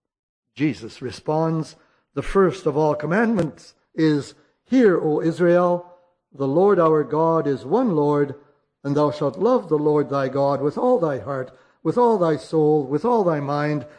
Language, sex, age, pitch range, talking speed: English, male, 60-79, 140-175 Hz, 165 wpm